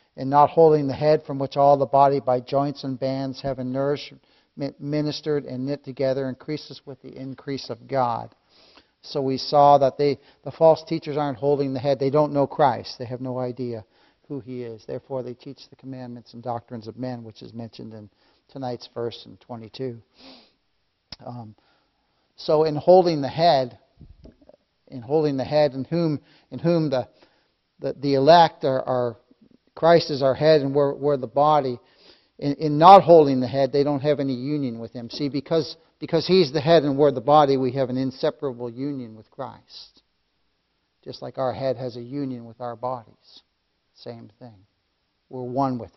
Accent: American